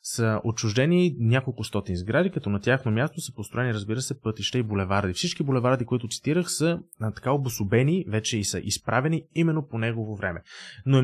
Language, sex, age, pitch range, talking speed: Bulgarian, male, 20-39, 115-160 Hz, 180 wpm